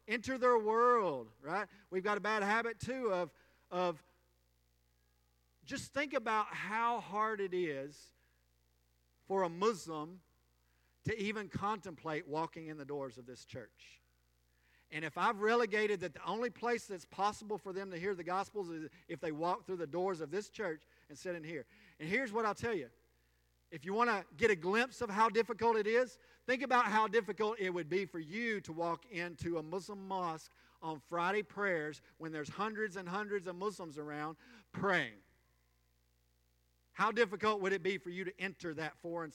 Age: 50-69